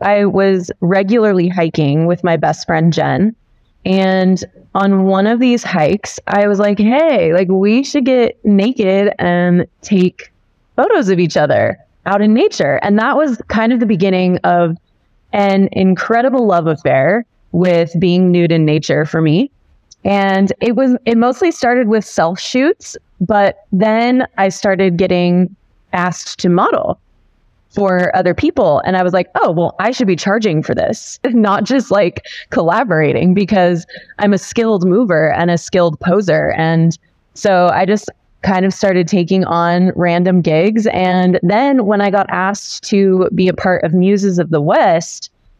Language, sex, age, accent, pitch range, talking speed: English, female, 20-39, American, 175-210 Hz, 160 wpm